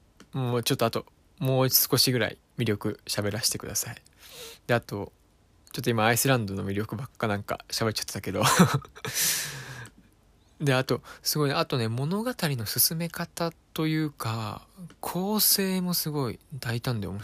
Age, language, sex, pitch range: 20-39, Japanese, male, 105-135 Hz